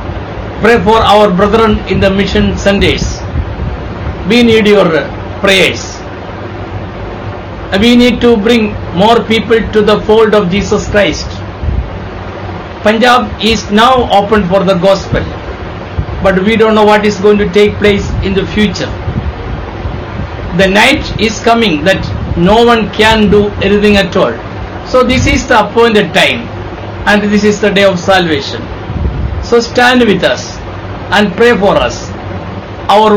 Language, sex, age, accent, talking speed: English, male, 60-79, Indian, 140 wpm